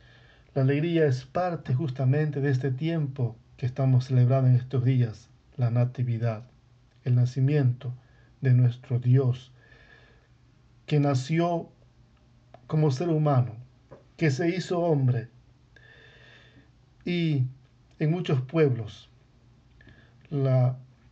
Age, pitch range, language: 50-69, 125-145 Hz, English